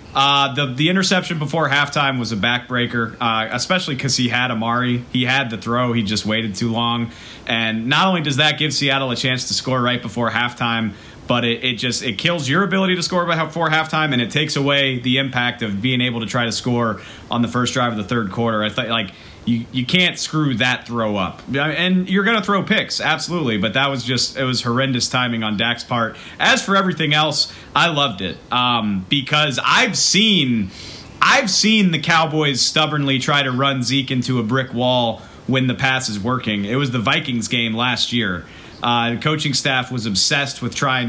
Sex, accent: male, American